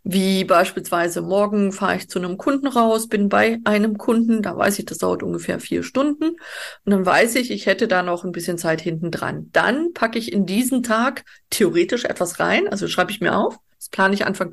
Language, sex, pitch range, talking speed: German, female, 195-255 Hz, 215 wpm